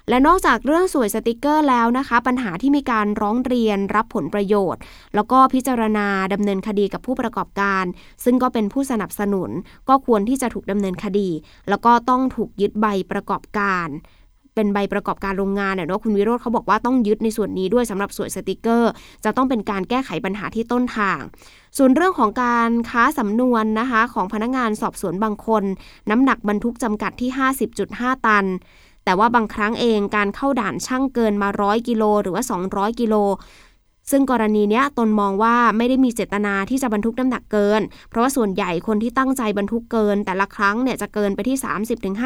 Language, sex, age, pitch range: Thai, female, 20-39, 200-245 Hz